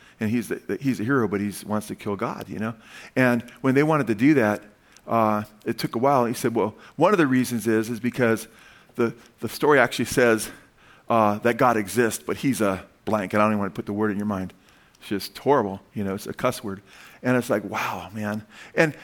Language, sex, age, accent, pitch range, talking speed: English, male, 50-69, American, 110-170 Hz, 245 wpm